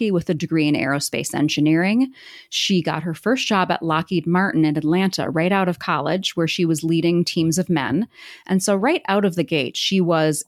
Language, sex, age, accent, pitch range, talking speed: English, female, 30-49, American, 160-195 Hz, 205 wpm